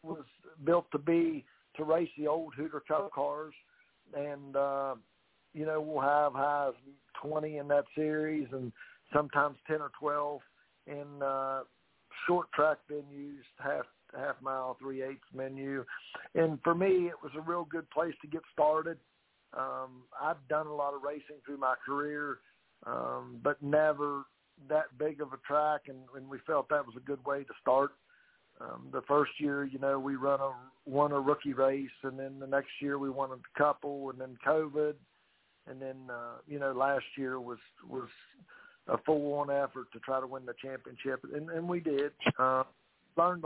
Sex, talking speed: male, 175 wpm